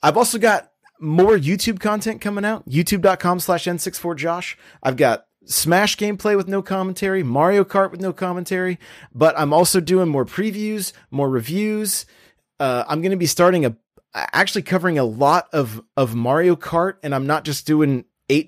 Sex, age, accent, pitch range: male, 30-49, American, 130-175 Hz